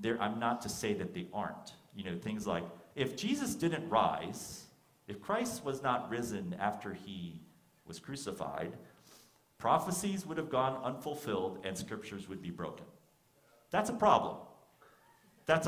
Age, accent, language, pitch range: 40-59, American, English, 105-180 Hz